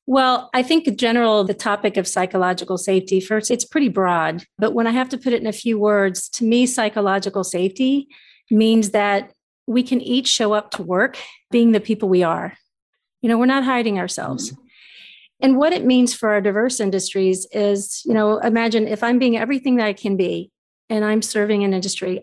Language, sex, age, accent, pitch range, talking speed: English, female, 40-59, American, 195-245 Hz, 195 wpm